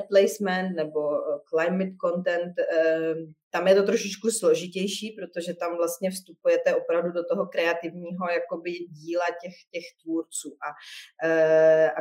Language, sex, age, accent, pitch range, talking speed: Czech, female, 30-49, native, 165-230 Hz, 135 wpm